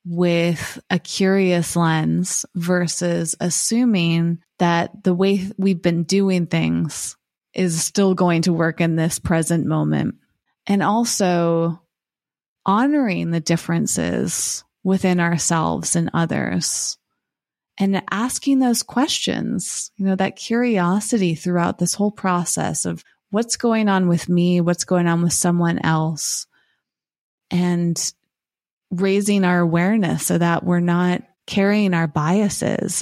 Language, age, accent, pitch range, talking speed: English, 30-49, American, 170-195 Hz, 120 wpm